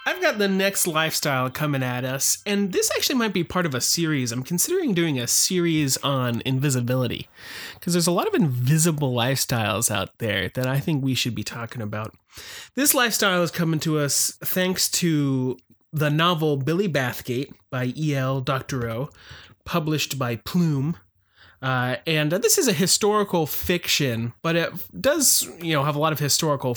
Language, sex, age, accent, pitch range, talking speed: English, male, 30-49, American, 125-175 Hz, 175 wpm